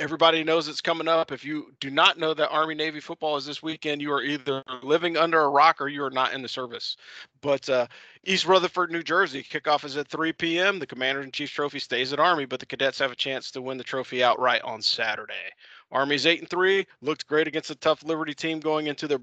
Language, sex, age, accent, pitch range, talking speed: English, male, 40-59, American, 135-155 Hz, 240 wpm